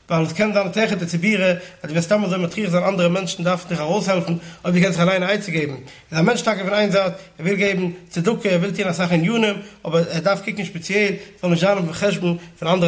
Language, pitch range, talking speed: English, 175-210 Hz, 210 wpm